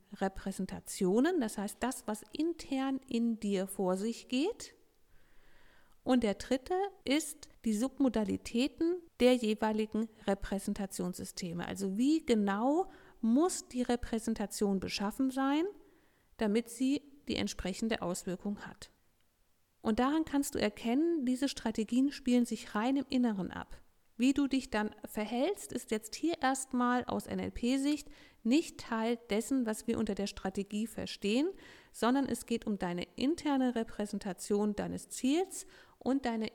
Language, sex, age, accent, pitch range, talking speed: German, female, 50-69, German, 205-270 Hz, 130 wpm